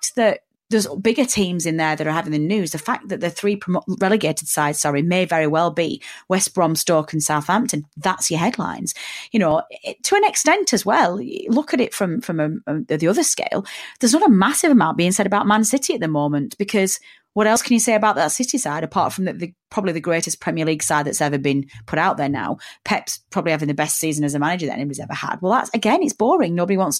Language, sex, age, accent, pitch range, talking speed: English, female, 30-49, British, 155-220 Hz, 245 wpm